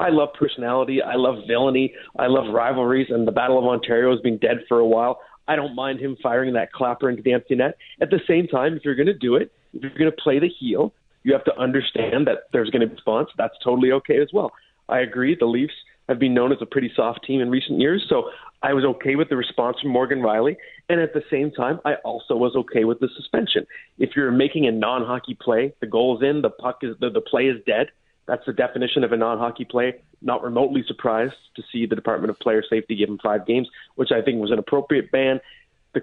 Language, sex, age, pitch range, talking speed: English, male, 30-49, 120-150 Hz, 240 wpm